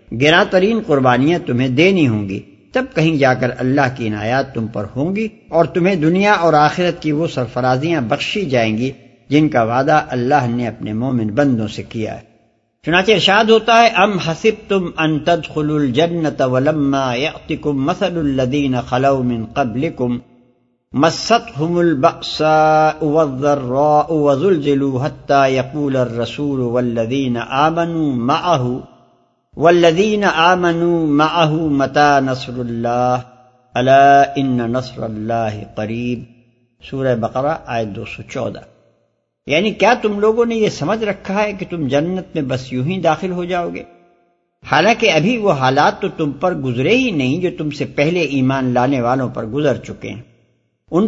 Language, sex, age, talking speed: Urdu, male, 60-79, 130 wpm